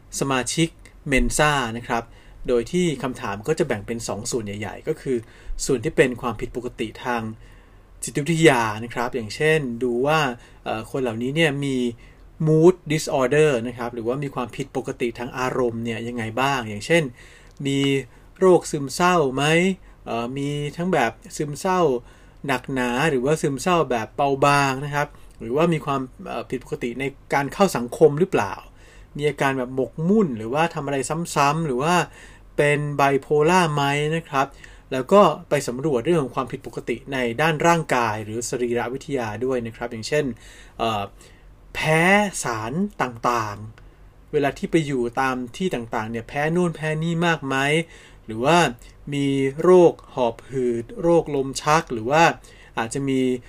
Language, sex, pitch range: Thai, male, 120-155 Hz